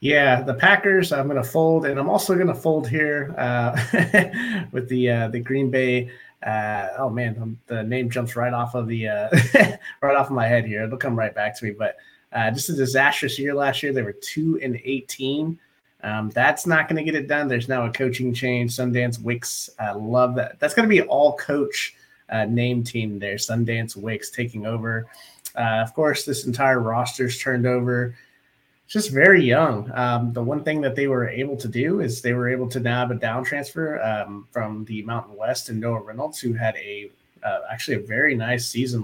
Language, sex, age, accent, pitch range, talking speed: English, male, 30-49, American, 120-145 Hz, 205 wpm